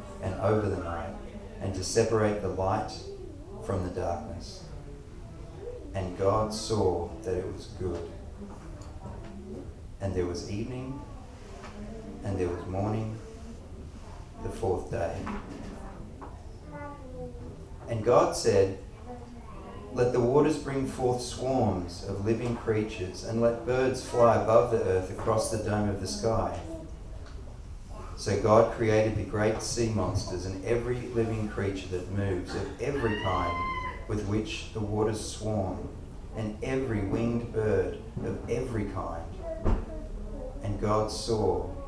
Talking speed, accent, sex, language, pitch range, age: 125 wpm, Australian, male, English, 95-115 Hz, 40-59